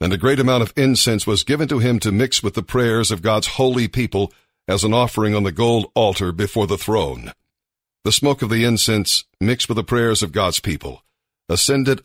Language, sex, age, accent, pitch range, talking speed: English, male, 50-69, American, 100-125 Hz, 210 wpm